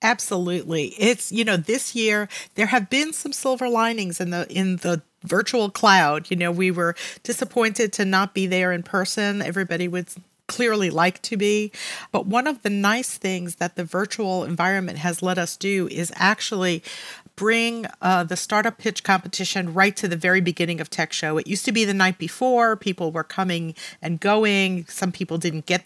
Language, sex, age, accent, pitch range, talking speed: English, female, 40-59, American, 170-205 Hz, 190 wpm